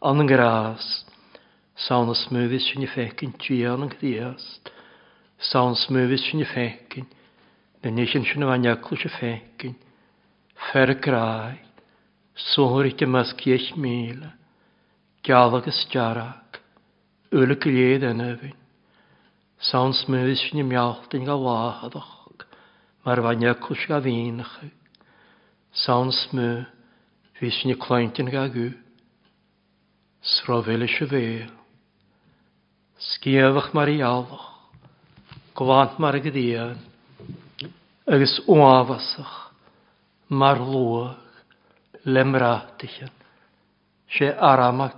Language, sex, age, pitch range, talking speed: English, male, 60-79, 120-140 Hz, 45 wpm